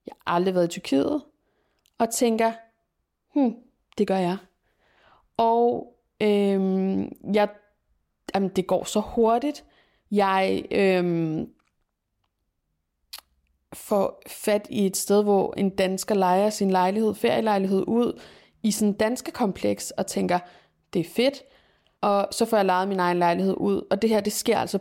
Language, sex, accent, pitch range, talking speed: Danish, female, native, 175-210 Hz, 145 wpm